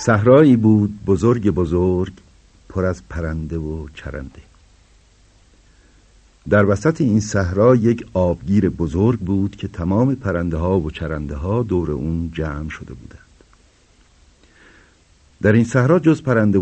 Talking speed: 120 wpm